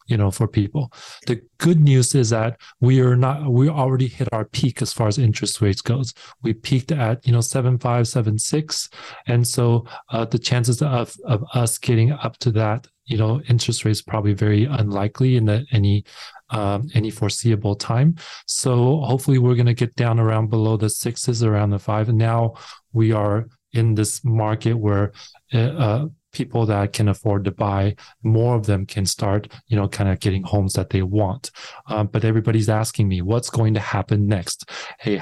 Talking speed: 190 wpm